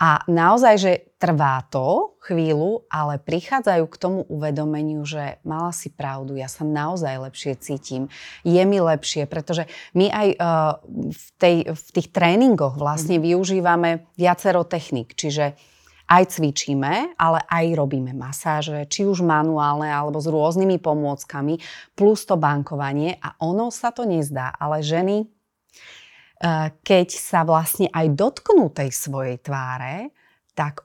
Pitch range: 150-180 Hz